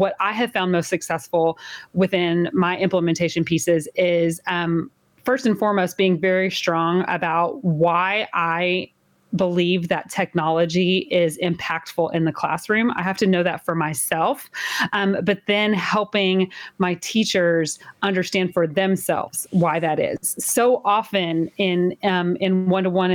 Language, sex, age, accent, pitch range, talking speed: English, female, 30-49, American, 175-200 Hz, 140 wpm